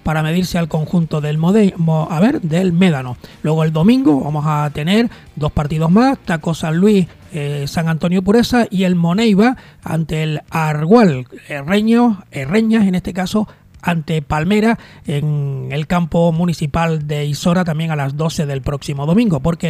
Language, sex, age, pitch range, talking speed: Spanish, male, 30-49, 160-215 Hz, 150 wpm